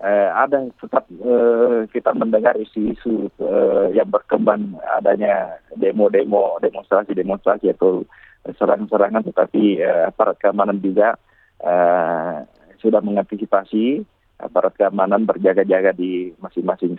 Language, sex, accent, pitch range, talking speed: English, male, Indonesian, 100-115 Hz, 100 wpm